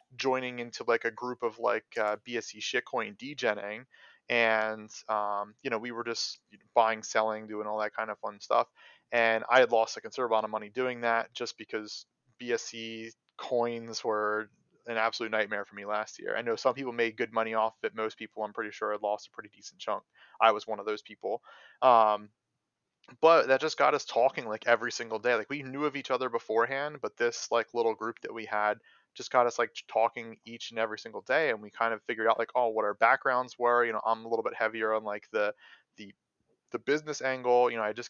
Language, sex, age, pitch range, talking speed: English, male, 30-49, 105-120 Hz, 225 wpm